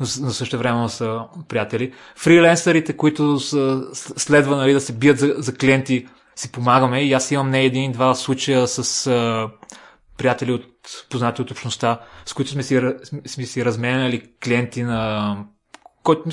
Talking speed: 135 wpm